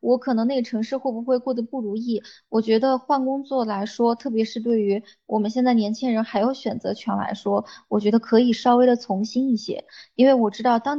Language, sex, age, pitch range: Chinese, female, 20-39, 205-250 Hz